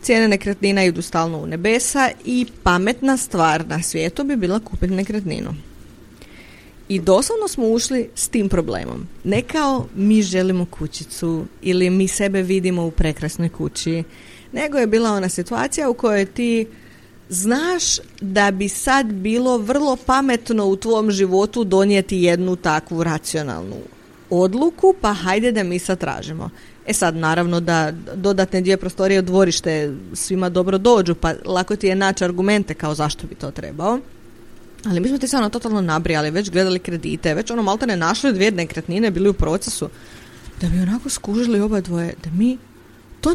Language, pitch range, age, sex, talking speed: Croatian, 175-240 Hz, 30-49, female, 160 wpm